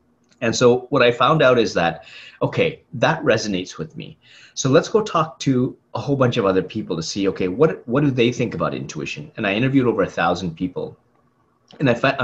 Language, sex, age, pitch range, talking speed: English, male, 30-49, 95-125 Hz, 215 wpm